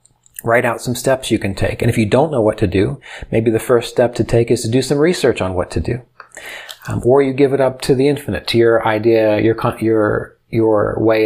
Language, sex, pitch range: English, male, 100-120 Hz